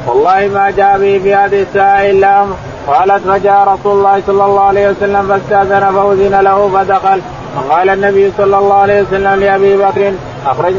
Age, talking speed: 20-39, 160 wpm